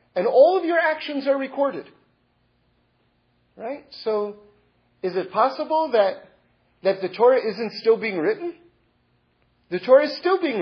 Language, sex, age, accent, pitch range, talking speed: English, male, 40-59, American, 200-285 Hz, 140 wpm